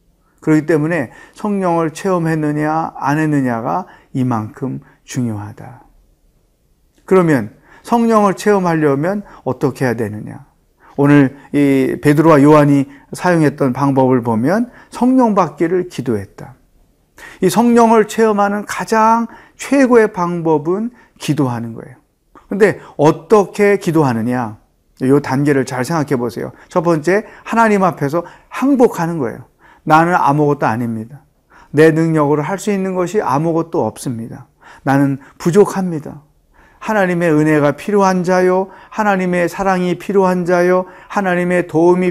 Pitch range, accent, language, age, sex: 145-200 Hz, native, Korean, 40-59, male